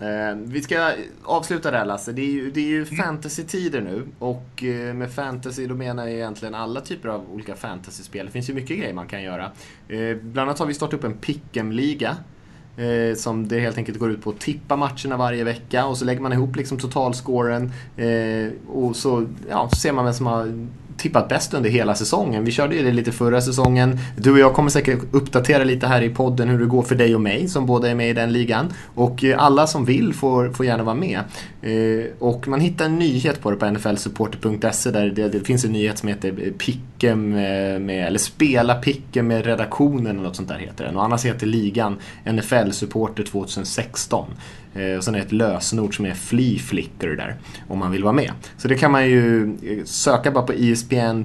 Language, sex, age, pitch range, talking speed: Swedish, male, 20-39, 105-130 Hz, 205 wpm